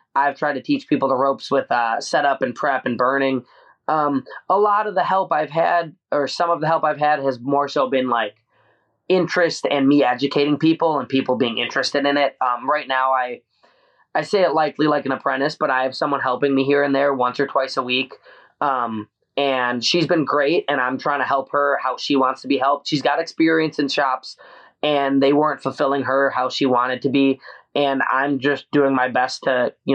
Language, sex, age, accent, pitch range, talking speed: English, male, 20-39, American, 130-155 Hz, 220 wpm